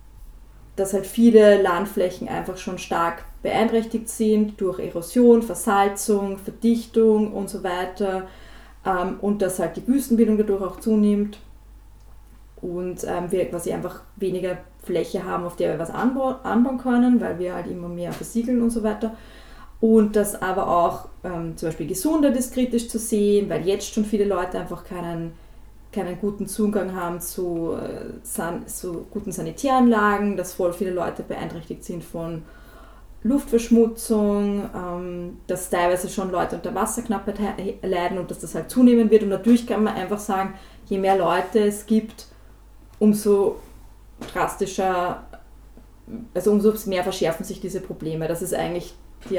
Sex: female